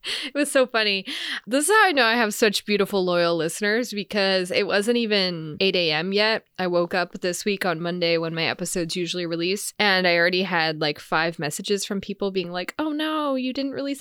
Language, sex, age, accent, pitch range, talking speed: English, female, 20-39, American, 175-235 Hz, 215 wpm